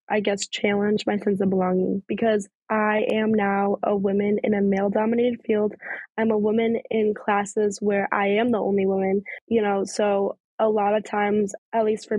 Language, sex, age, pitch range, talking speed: English, female, 10-29, 200-225 Hz, 185 wpm